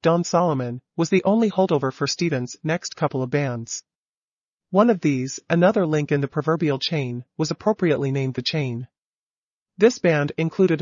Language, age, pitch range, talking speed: English, 40-59, 140-170 Hz, 160 wpm